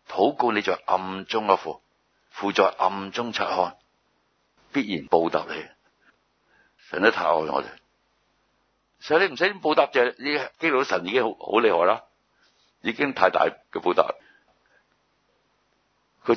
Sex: male